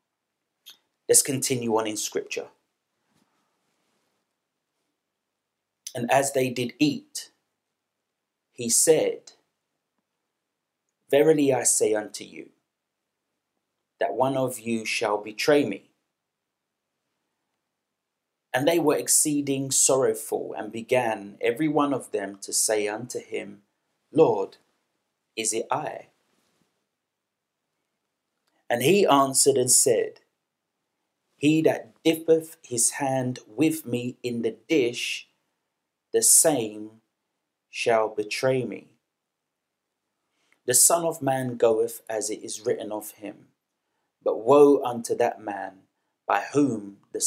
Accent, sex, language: British, male, English